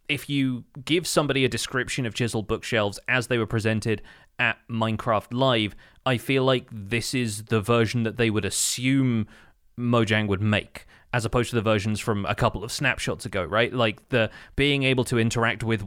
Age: 30-49